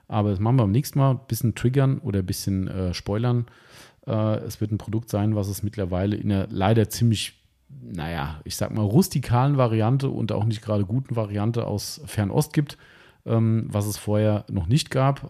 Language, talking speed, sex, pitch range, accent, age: German, 195 wpm, male, 100-130 Hz, German, 40-59